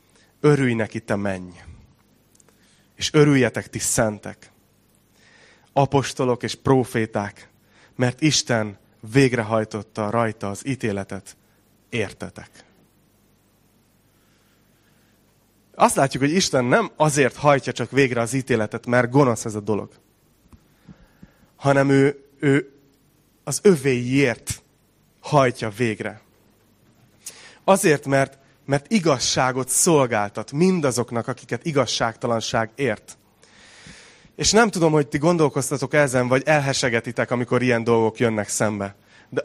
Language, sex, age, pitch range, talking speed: Hungarian, male, 30-49, 110-140 Hz, 100 wpm